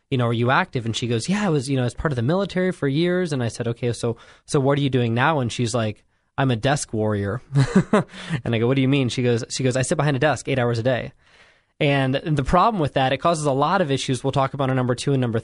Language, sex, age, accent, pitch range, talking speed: English, male, 20-39, American, 120-155 Hz, 300 wpm